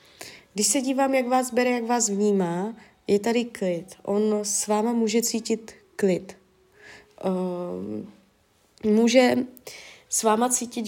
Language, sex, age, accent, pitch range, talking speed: Czech, female, 20-39, native, 205-255 Hz, 120 wpm